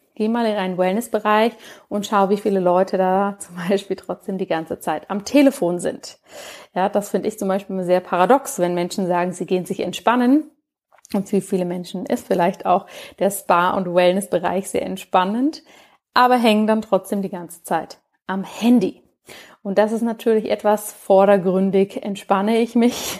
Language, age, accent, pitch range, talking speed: German, 30-49, German, 185-220 Hz, 170 wpm